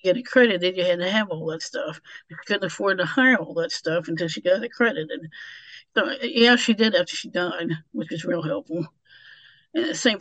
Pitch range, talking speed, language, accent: 165-215 Hz, 205 wpm, English, American